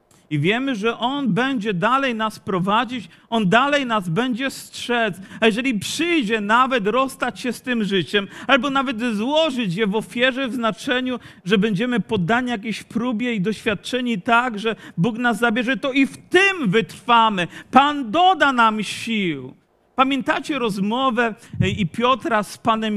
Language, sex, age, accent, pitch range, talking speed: Polish, male, 40-59, native, 210-255 Hz, 150 wpm